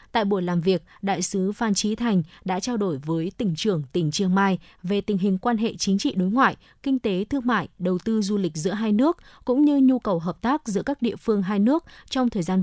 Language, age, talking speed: Vietnamese, 20-39, 250 wpm